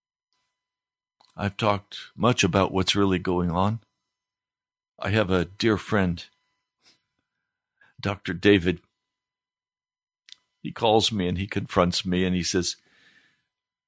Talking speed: 110 wpm